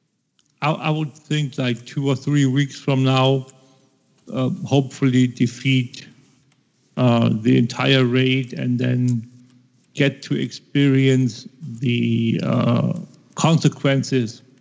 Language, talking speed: English, 105 wpm